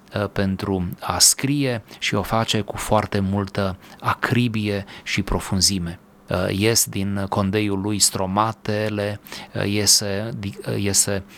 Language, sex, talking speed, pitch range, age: Romanian, male, 100 wpm, 95-110 Hz, 30-49